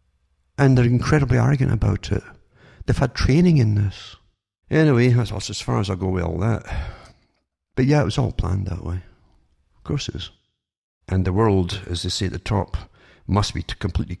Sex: male